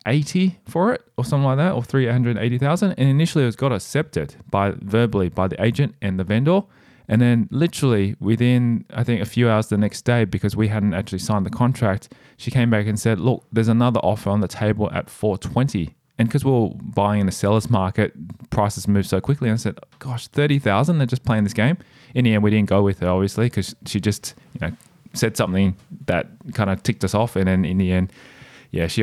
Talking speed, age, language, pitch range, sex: 225 wpm, 20-39, English, 95-125 Hz, male